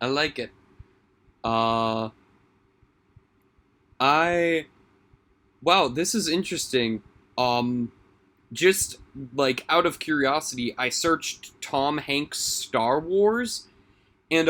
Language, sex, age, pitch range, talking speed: English, male, 20-39, 95-145 Hz, 90 wpm